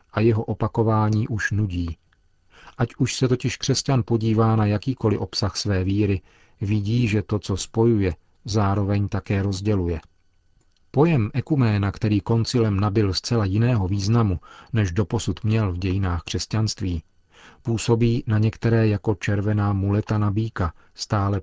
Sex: male